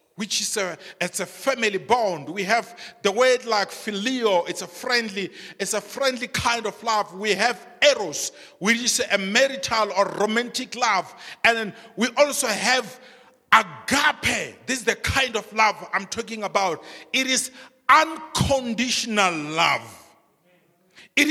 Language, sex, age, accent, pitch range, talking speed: English, male, 50-69, Nigerian, 200-255 Hz, 145 wpm